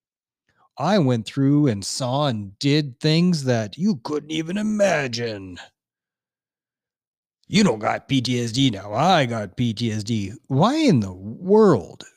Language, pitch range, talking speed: English, 115-150 Hz, 125 wpm